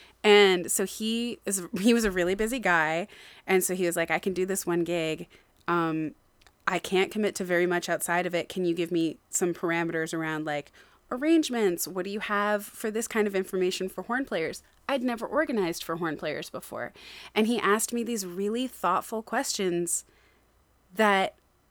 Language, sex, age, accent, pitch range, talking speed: English, female, 20-39, American, 180-225 Hz, 190 wpm